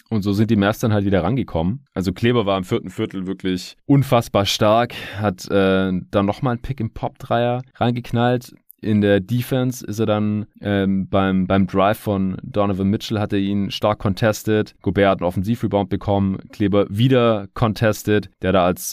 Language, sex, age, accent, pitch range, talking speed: German, male, 30-49, German, 95-105 Hz, 180 wpm